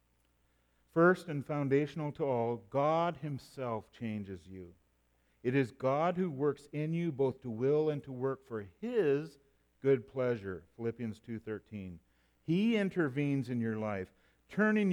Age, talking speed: 50-69, 135 wpm